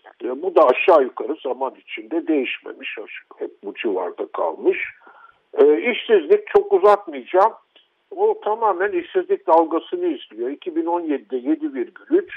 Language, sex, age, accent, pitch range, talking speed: Turkish, male, 60-79, native, 320-435 Hz, 100 wpm